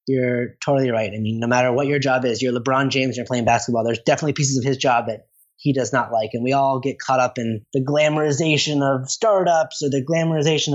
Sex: male